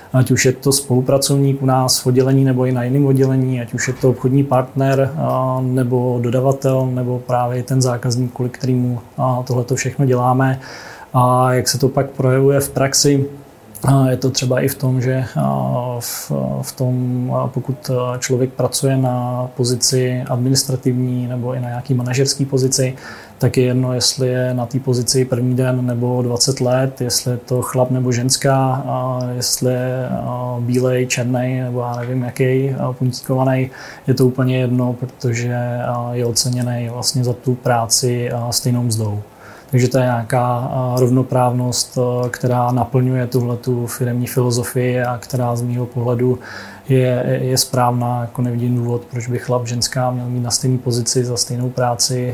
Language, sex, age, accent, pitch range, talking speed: Czech, male, 20-39, native, 125-130 Hz, 155 wpm